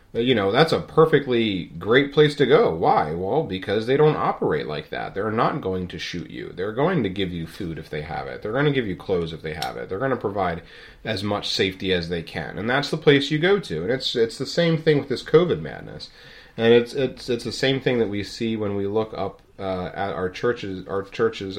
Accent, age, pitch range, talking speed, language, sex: American, 30-49, 95-130 Hz, 250 wpm, English, male